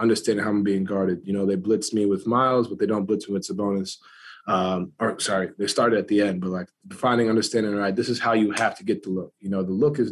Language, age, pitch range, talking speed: English, 20-39, 100-120 Hz, 275 wpm